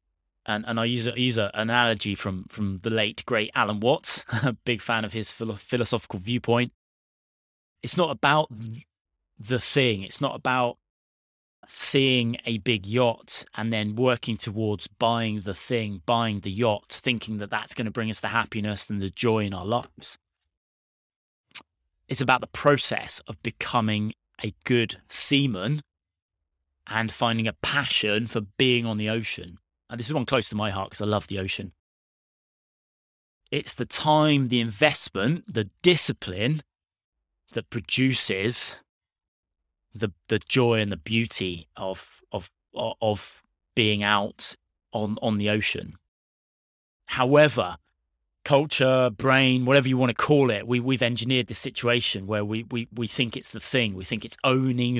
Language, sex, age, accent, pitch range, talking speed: English, male, 30-49, British, 100-125 Hz, 150 wpm